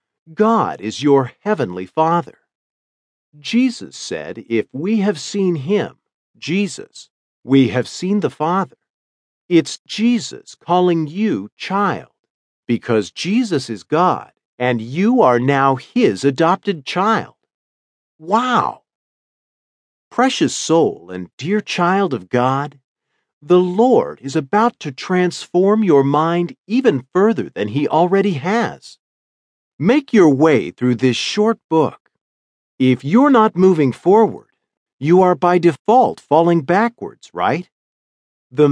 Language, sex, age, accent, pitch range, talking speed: English, male, 50-69, American, 125-205 Hz, 120 wpm